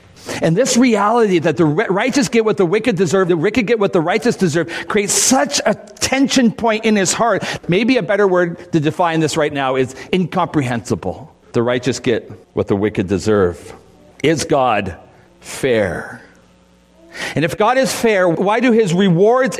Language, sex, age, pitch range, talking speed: English, male, 40-59, 140-190 Hz, 170 wpm